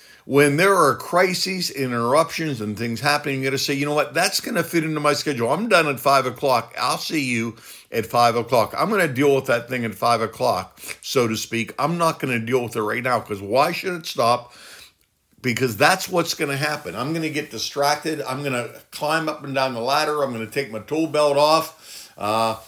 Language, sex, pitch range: English, male, 120-150 Hz